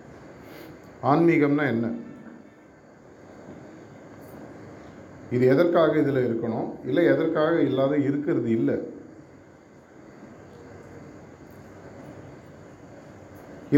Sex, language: male, Tamil